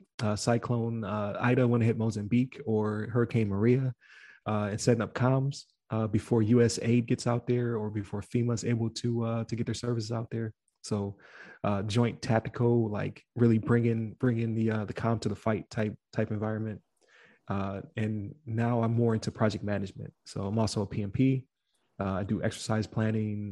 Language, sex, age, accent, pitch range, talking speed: English, male, 20-39, American, 105-120 Hz, 185 wpm